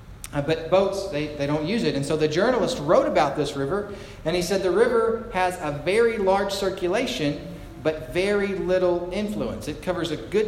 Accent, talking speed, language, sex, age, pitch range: American, 190 wpm, English, male, 40-59, 145-195 Hz